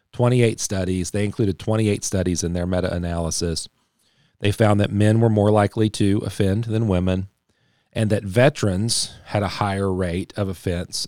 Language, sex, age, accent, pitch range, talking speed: English, male, 40-59, American, 90-105 Hz, 155 wpm